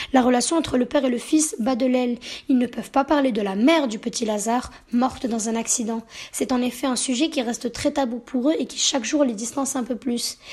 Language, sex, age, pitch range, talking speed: French, female, 10-29, 235-285 Hz, 260 wpm